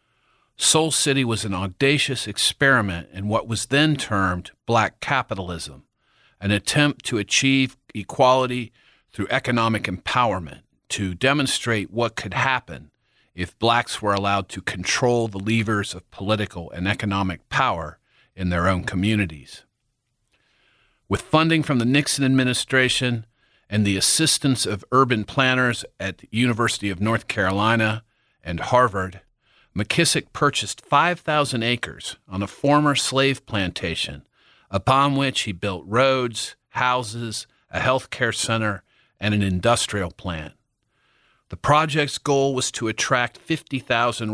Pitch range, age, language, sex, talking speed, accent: 100-130 Hz, 40-59, English, male, 125 wpm, American